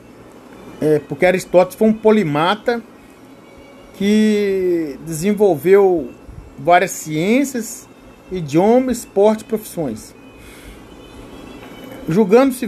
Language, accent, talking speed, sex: Portuguese, Brazilian, 65 wpm, male